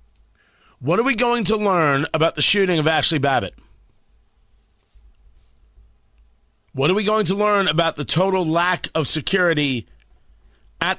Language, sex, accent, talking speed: English, male, American, 135 wpm